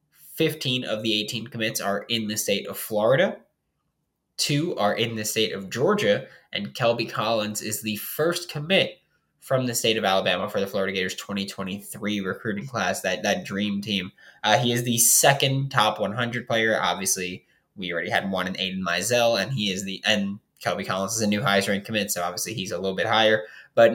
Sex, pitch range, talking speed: male, 95-115 Hz, 195 wpm